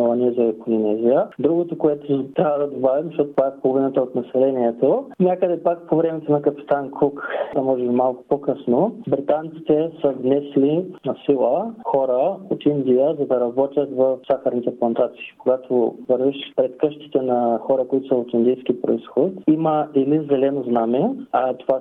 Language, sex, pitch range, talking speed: Bulgarian, male, 125-150 Hz, 150 wpm